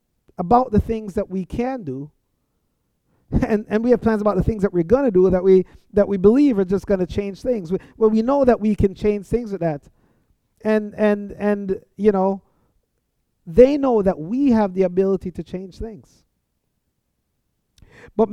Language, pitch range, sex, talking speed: English, 180-225 Hz, male, 185 wpm